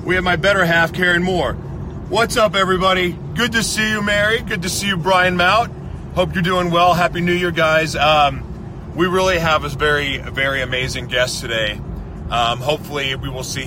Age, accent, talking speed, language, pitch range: 40-59, American, 195 wpm, English, 120-165 Hz